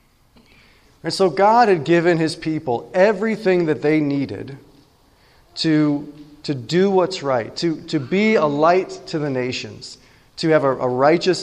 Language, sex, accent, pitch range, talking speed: English, male, American, 135-180 Hz, 150 wpm